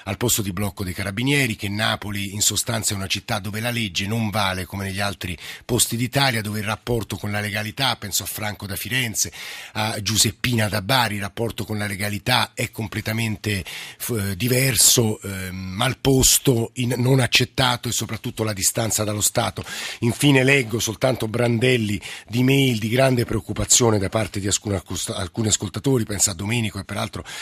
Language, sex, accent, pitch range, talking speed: Italian, male, native, 100-120 Hz, 170 wpm